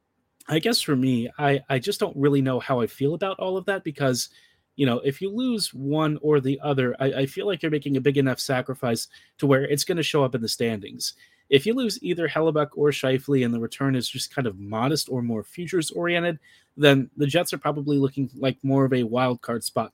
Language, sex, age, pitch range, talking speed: English, male, 30-49, 125-145 Hz, 240 wpm